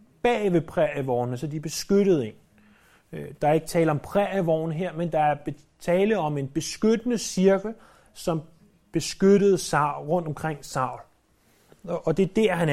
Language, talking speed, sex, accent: Danish, 150 wpm, male, native